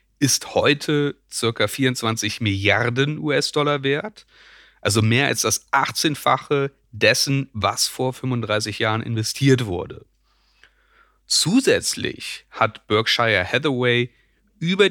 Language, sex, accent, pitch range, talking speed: German, male, German, 105-130 Hz, 95 wpm